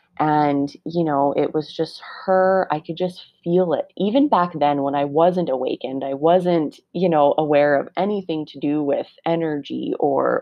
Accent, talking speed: American, 180 wpm